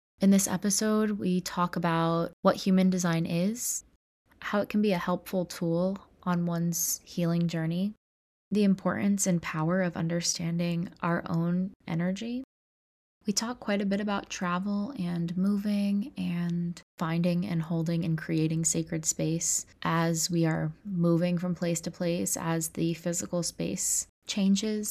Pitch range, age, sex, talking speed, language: 160-180 Hz, 20-39, female, 145 wpm, English